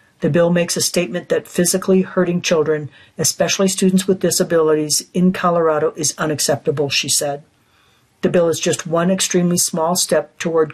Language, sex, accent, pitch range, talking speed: English, female, American, 155-175 Hz, 155 wpm